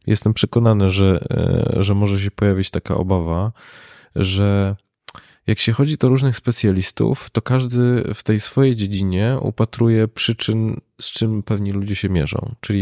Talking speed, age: 145 wpm, 20-39